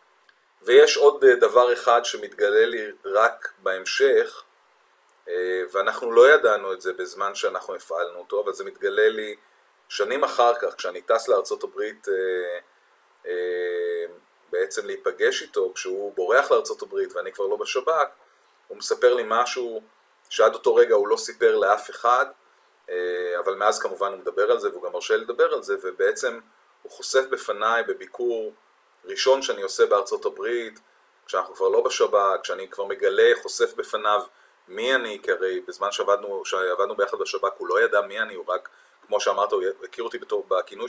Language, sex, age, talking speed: Hebrew, male, 30-49, 155 wpm